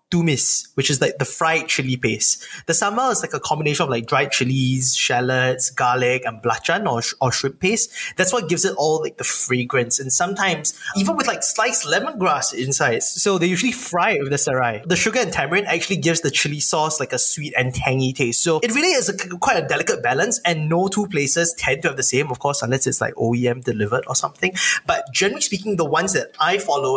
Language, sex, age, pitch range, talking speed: English, male, 20-39, 130-175 Hz, 220 wpm